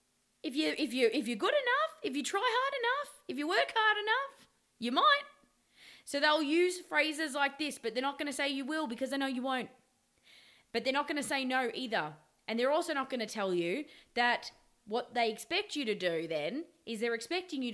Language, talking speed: English, 235 wpm